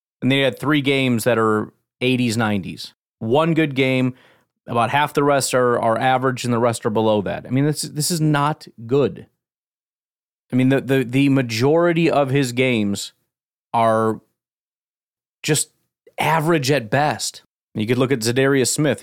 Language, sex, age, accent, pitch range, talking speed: English, male, 30-49, American, 115-140 Hz, 165 wpm